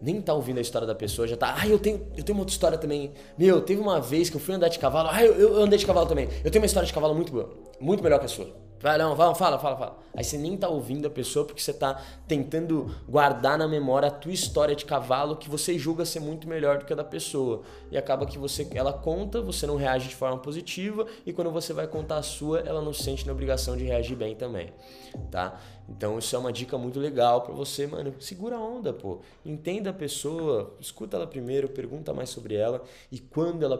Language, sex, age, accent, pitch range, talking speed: Portuguese, male, 20-39, Brazilian, 105-155 Hz, 250 wpm